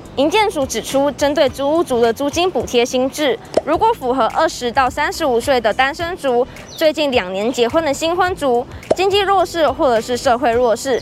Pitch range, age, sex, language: 240-330 Hz, 20-39, female, Chinese